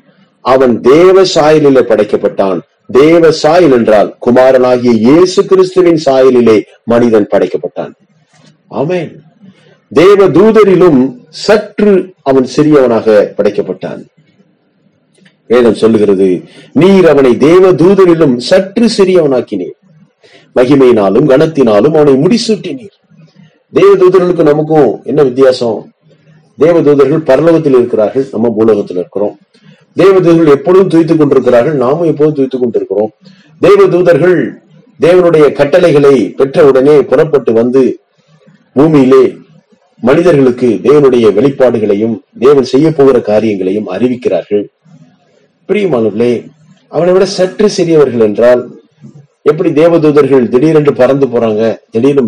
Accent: native